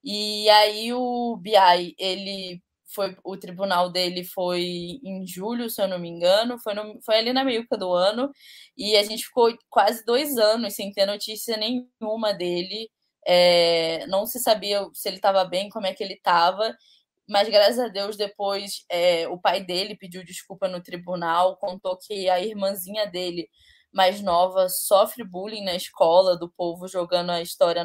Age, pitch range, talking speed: 10-29, 185-220 Hz, 160 wpm